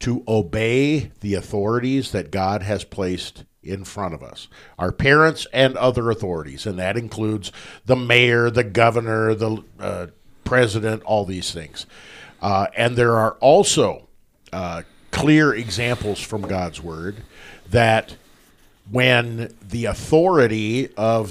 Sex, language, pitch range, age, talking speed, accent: male, English, 105-130 Hz, 50-69, 130 wpm, American